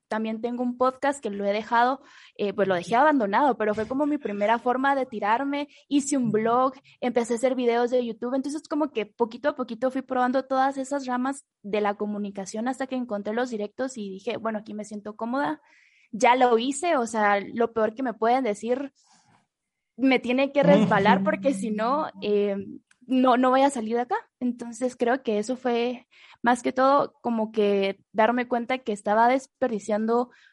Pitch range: 220-265 Hz